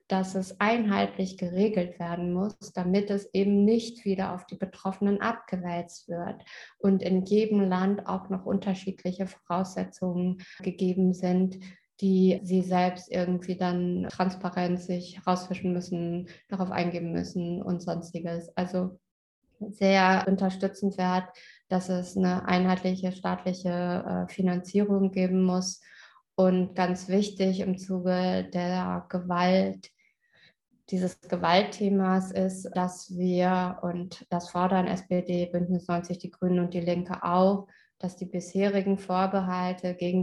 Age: 20-39